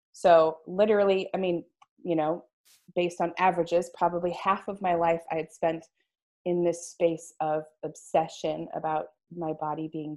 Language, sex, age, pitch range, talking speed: English, female, 20-39, 165-195 Hz, 155 wpm